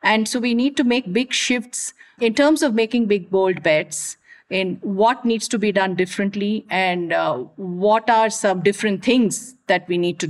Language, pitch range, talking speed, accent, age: English, 200-250 Hz, 190 wpm, Indian, 50-69